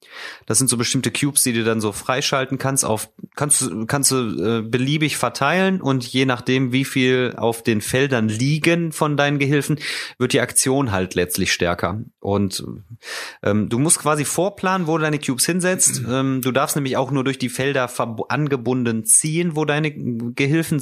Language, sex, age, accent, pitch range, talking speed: German, male, 30-49, German, 115-145 Hz, 180 wpm